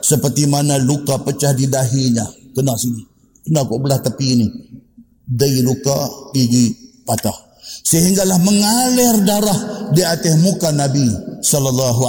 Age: 50-69